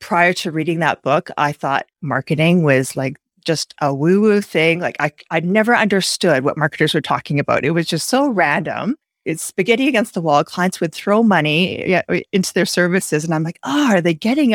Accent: American